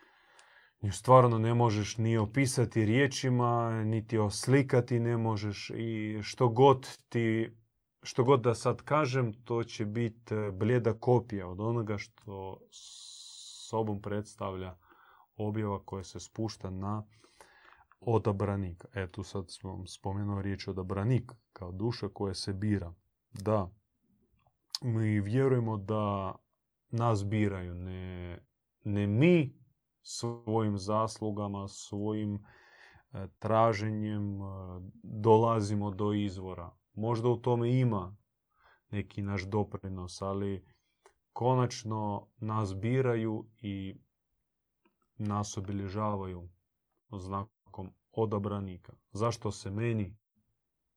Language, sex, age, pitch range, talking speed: Croatian, male, 30-49, 100-115 Hz, 100 wpm